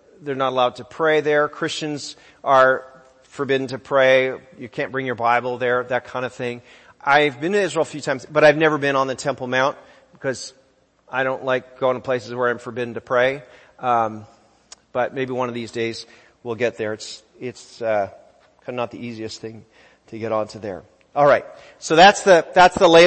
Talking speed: 205 wpm